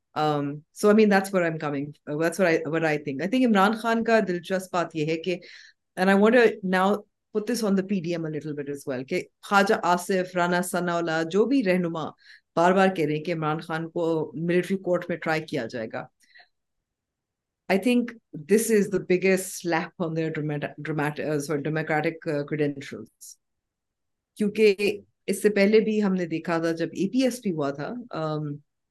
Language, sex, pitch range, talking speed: Urdu, female, 155-195 Hz, 125 wpm